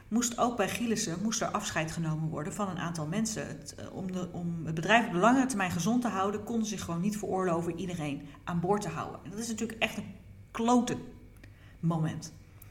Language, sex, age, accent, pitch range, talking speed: Dutch, female, 40-59, Dutch, 175-260 Hz, 215 wpm